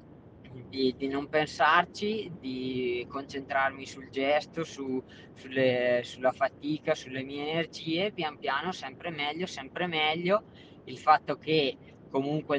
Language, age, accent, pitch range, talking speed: Italian, 20-39, native, 130-155 Hz, 110 wpm